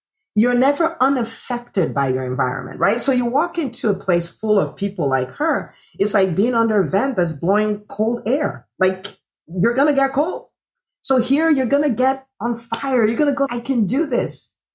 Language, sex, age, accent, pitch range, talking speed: English, female, 40-59, American, 175-240 Hz, 205 wpm